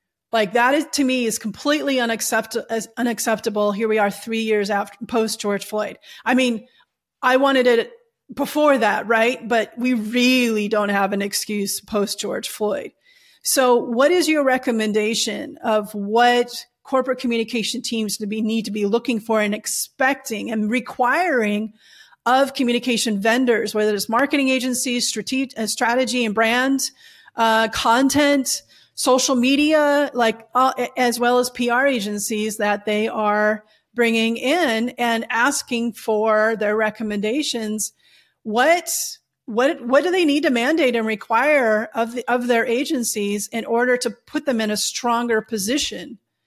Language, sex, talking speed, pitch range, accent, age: English, female, 145 wpm, 220-260 Hz, American, 30-49